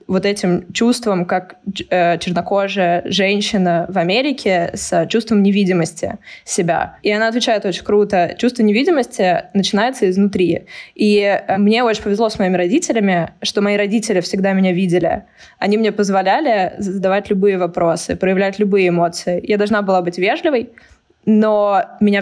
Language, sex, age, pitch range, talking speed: Russian, female, 20-39, 185-210 Hz, 135 wpm